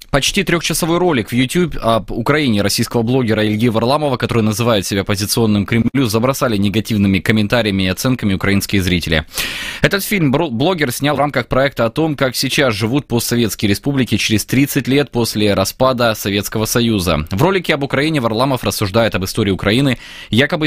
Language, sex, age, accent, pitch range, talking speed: Russian, male, 20-39, native, 105-135 Hz, 155 wpm